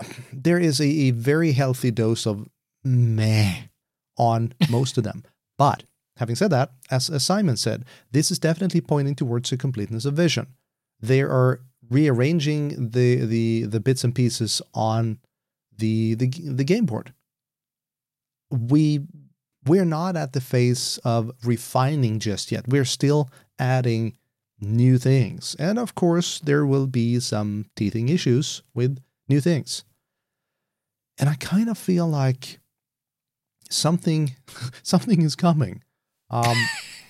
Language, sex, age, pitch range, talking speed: English, male, 40-59, 120-150 Hz, 135 wpm